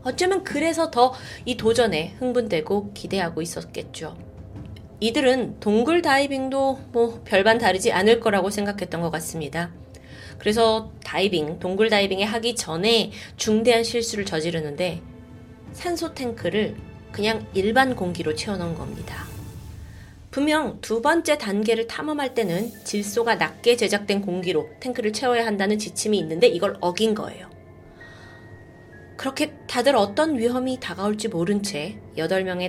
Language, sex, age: Korean, female, 20-39